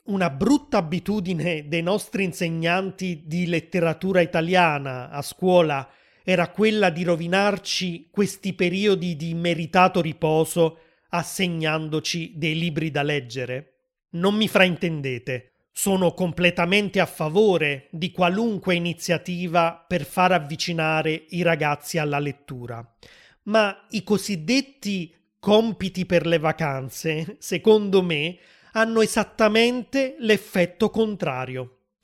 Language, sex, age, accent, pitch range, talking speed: Italian, male, 30-49, native, 155-195 Hz, 105 wpm